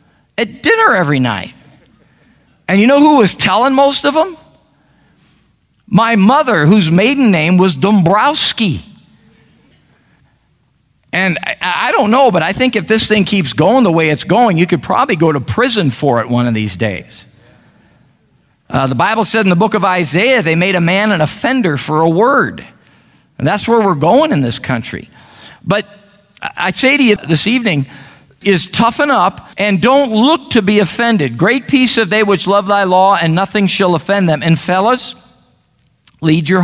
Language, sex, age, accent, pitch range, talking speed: English, male, 50-69, American, 150-215 Hz, 175 wpm